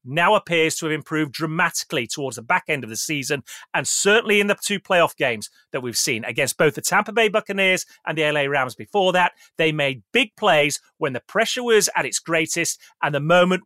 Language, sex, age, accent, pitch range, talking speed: English, male, 30-49, British, 140-185 Hz, 215 wpm